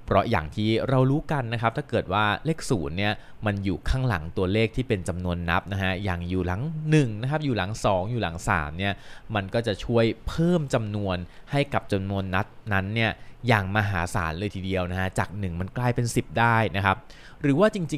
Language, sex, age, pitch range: Thai, male, 20-39, 95-130 Hz